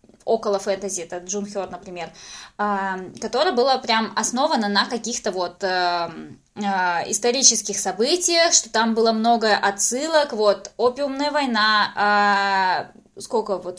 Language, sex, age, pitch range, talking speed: Russian, female, 20-39, 200-240 Hz, 125 wpm